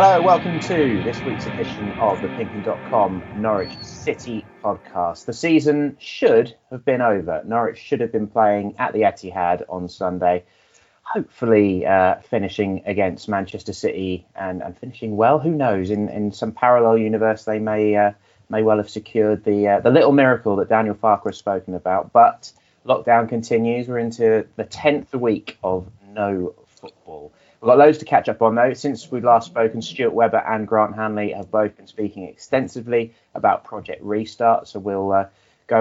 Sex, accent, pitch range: male, British, 105-140 Hz